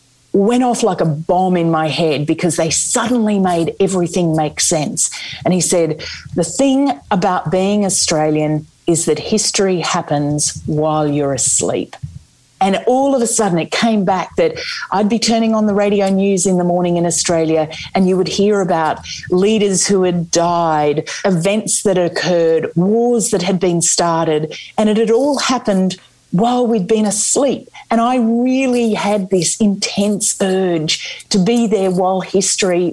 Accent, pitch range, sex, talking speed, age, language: Australian, 170-225 Hz, female, 160 wpm, 40-59, English